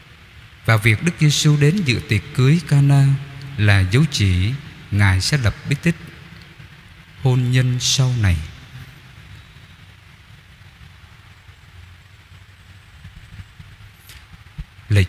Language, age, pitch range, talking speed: Vietnamese, 20-39, 100-135 Hz, 90 wpm